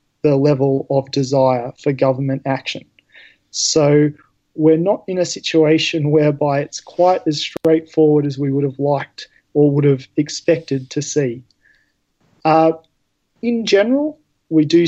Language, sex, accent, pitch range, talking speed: English, male, Australian, 140-170 Hz, 135 wpm